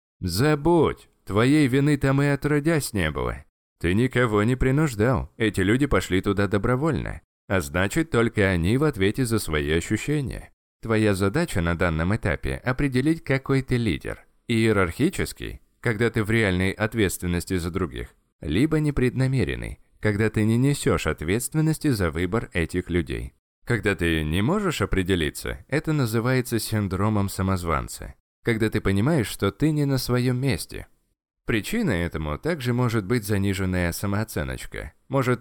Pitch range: 90-130 Hz